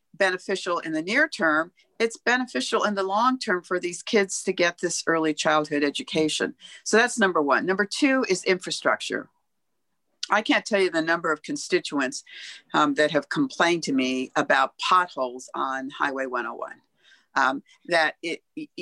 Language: English